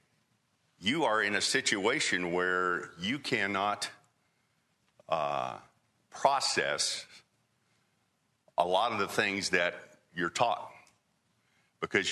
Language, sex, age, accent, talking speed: English, male, 50-69, American, 95 wpm